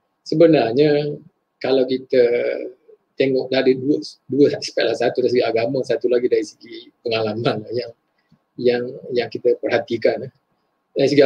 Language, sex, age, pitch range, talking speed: Malay, male, 20-39, 135-190 Hz, 130 wpm